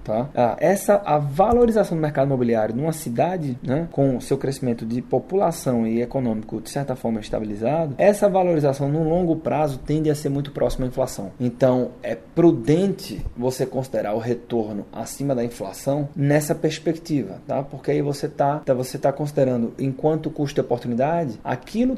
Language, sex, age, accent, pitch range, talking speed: Portuguese, male, 20-39, Brazilian, 130-190 Hz, 165 wpm